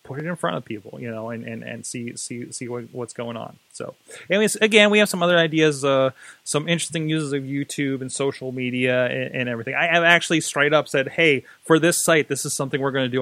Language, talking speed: English, 250 wpm